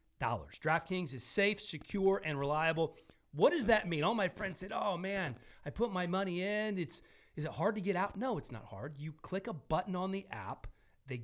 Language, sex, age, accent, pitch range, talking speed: English, male, 40-59, American, 130-185 Hz, 220 wpm